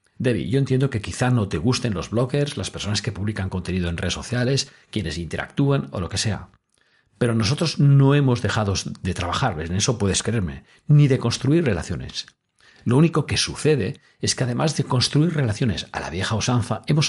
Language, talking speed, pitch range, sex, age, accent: Spanish, 190 wpm, 95-130 Hz, male, 40-59, Spanish